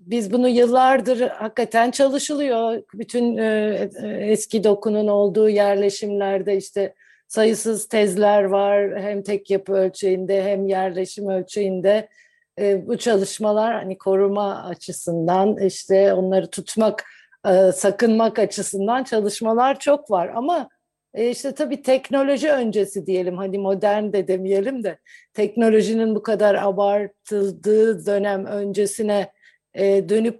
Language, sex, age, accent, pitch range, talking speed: Turkish, female, 50-69, native, 195-230 Hz, 105 wpm